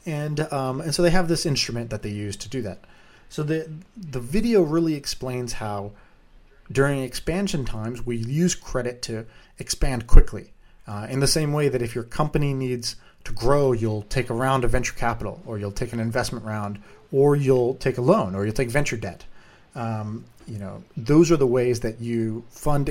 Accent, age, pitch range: American, 30-49, 110-150 Hz